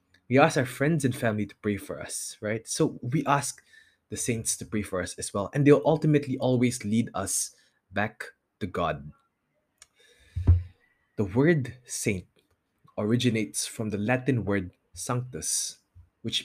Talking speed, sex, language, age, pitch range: 150 wpm, male, English, 20-39, 105-130 Hz